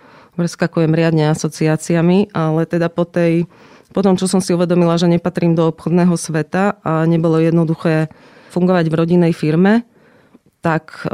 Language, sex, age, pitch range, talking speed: Slovak, female, 30-49, 150-175 Hz, 140 wpm